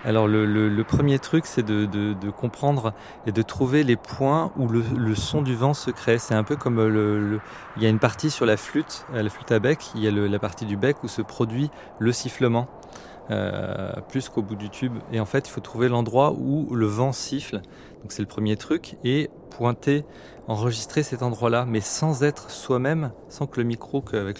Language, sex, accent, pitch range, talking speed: French, male, French, 105-130 Hz, 225 wpm